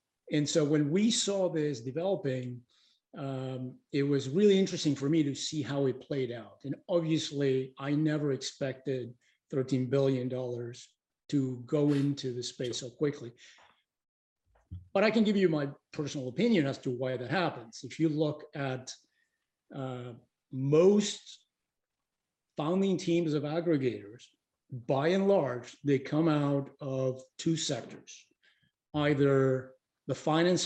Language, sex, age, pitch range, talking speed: English, male, 50-69, 135-165 Hz, 135 wpm